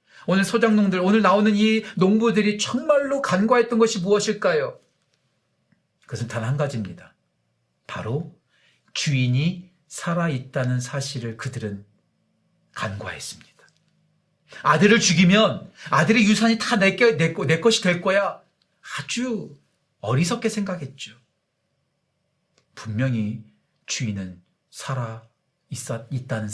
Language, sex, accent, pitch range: Korean, male, native, 140-230 Hz